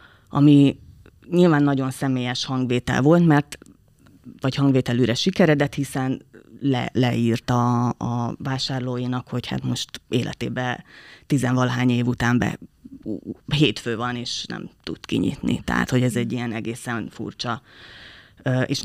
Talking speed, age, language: 115 wpm, 20-39, Hungarian